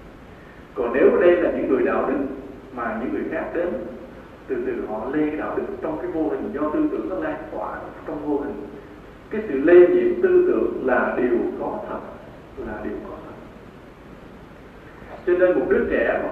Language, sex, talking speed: Vietnamese, male, 190 wpm